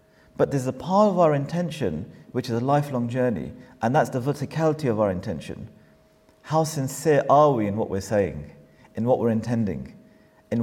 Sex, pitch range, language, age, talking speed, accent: male, 120-165 Hz, English, 40-59, 180 wpm, British